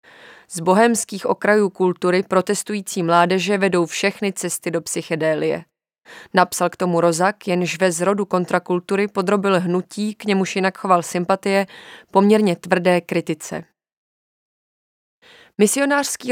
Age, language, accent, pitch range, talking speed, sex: 20-39, Czech, native, 175-205 Hz, 110 wpm, female